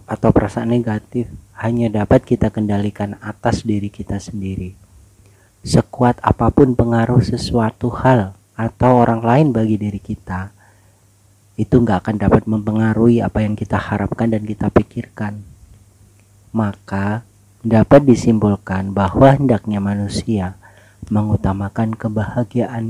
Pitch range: 100-115 Hz